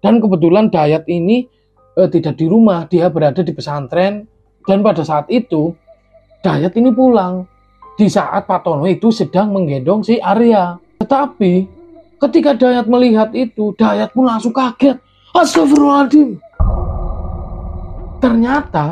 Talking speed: 125 wpm